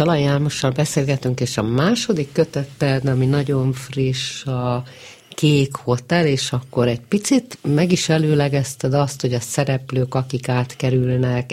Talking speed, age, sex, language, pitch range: 130 wpm, 50-69, female, Hungarian, 130-160 Hz